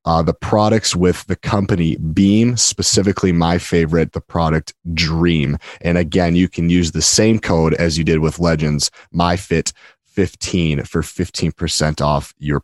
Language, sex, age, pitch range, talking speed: English, male, 30-49, 80-95 Hz, 145 wpm